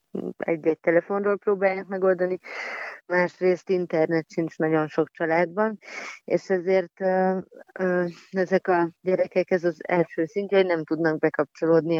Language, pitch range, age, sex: Hungarian, 155-185 Hz, 30-49, female